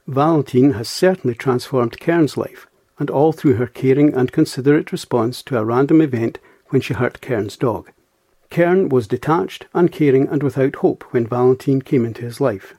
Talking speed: 170 wpm